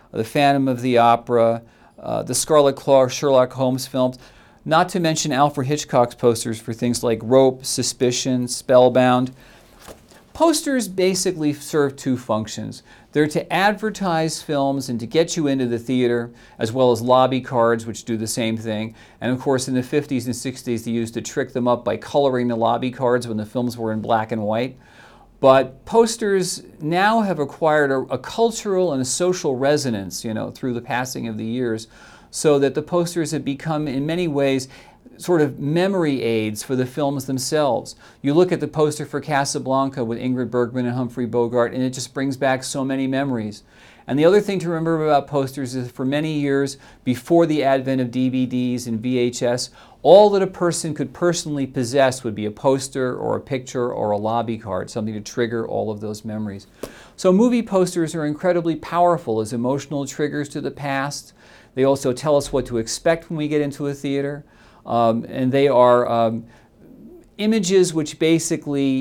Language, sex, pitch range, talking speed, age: English, male, 120-150 Hz, 185 wpm, 40-59